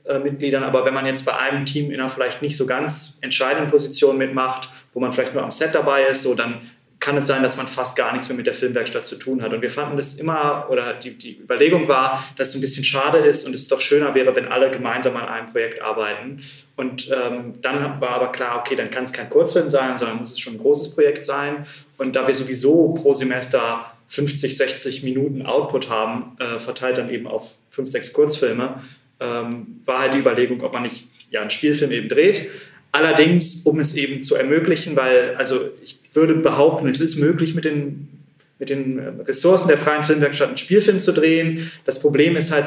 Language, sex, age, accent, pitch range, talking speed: German, male, 20-39, German, 130-155 Hz, 215 wpm